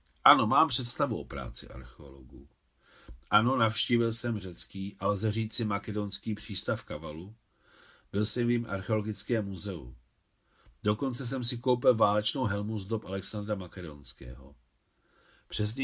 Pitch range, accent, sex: 95-125 Hz, native, male